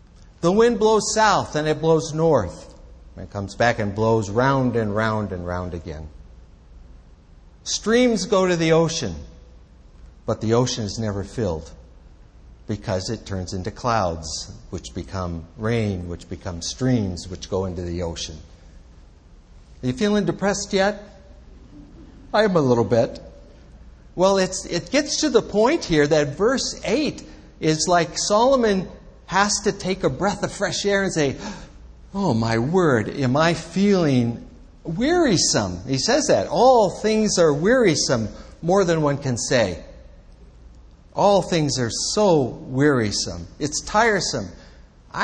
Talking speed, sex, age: 140 wpm, male, 60-79